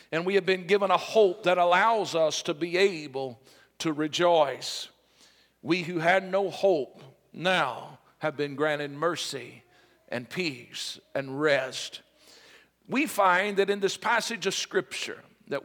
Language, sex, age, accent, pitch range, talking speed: English, male, 50-69, American, 170-205 Hz, 145 wpm